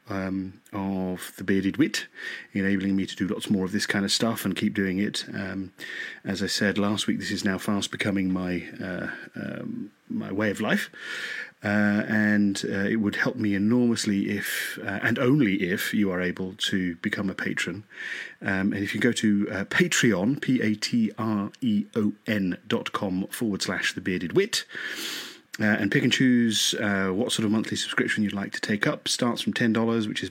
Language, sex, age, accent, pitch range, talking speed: English, male, 30-49, British, 95-115 Hz, 190 wpm